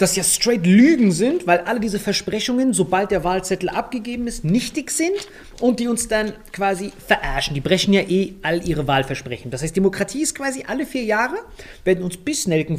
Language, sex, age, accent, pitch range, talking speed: German, male, 30-49, German, 165-250 Hz, 190 wpm